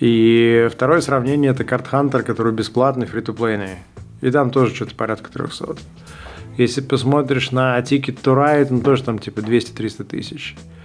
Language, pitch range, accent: Russian, 115-140 Hz, native